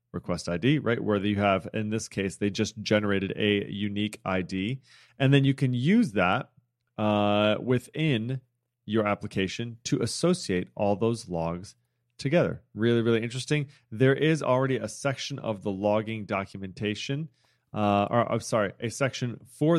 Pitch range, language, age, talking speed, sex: 100-130 Hz, English, 30-49, 150 wpm, male